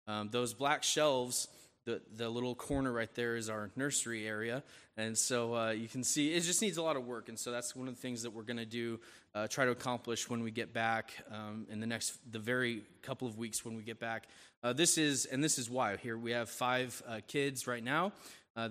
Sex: male